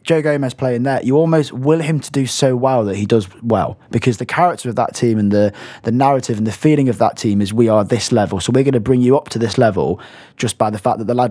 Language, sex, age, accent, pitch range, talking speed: English, male, 20-39, British, 110-145 Hz, 285 wpm